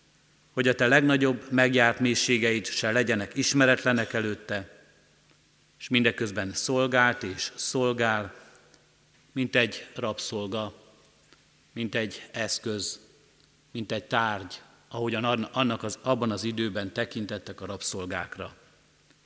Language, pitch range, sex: Hungarian, 105-130 Hz, male